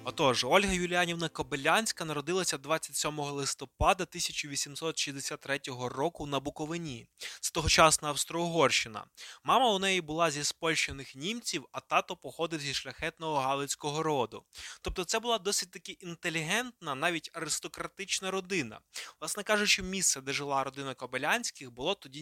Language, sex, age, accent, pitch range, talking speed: Ukrainian, male, 20-39, native, 140-175 Hz, 125 wpm